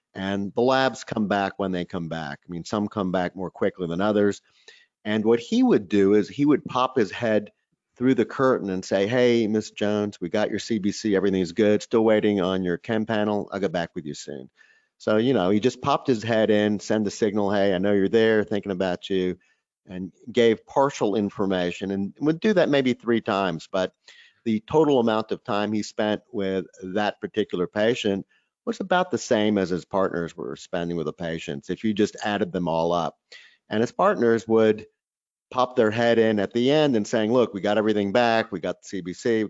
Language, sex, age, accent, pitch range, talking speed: English, male, 50-69, American, 95-115 Hz, 215 wpm